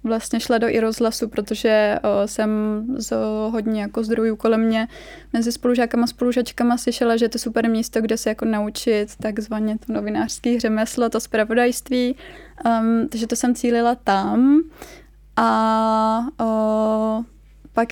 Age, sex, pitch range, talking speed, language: 20-39, female, 220-245 Hz, 145 wpm, Czech